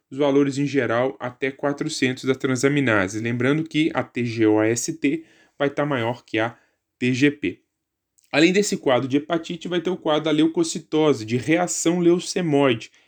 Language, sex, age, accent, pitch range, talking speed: Portuguese, male, 10-29, Brazilian, 130-165 Hz, 145 wpm